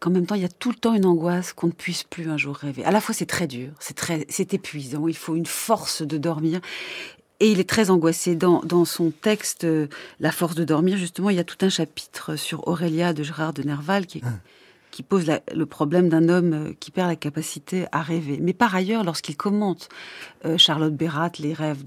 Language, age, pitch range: French, 40-59, 160-200 Hz